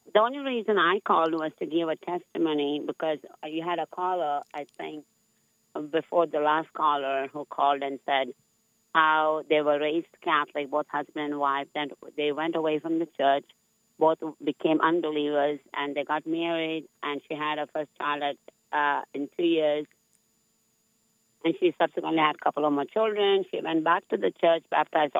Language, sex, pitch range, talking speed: English, female, 150-170 Hz, 175 wpm